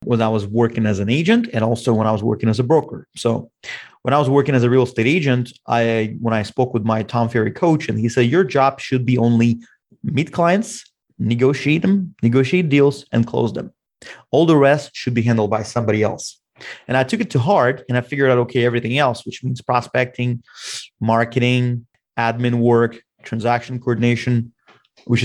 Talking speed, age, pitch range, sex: 195 wpm, 30-49, 115-140 Hz, male